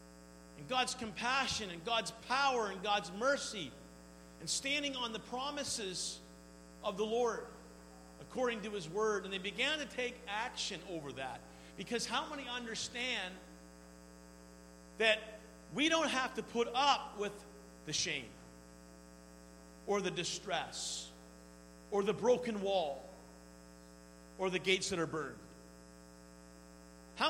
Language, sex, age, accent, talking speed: English, male, 50-69, American, 125 wpm